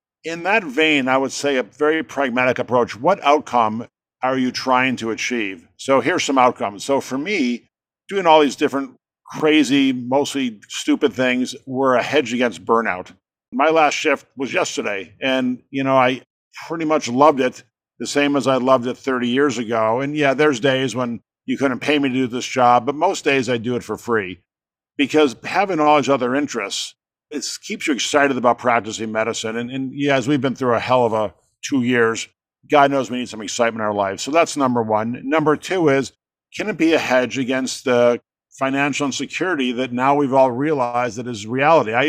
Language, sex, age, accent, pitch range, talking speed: English, male, 50-69, American, 120-145 Hz, 200 wpm